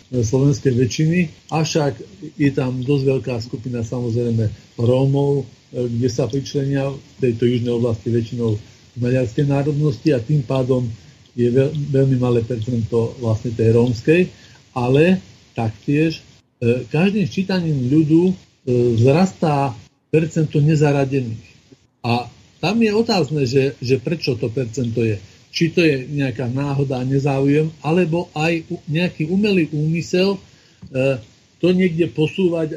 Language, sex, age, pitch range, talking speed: Slovak, male, 50-69, 125-155 Hz, 115 wpm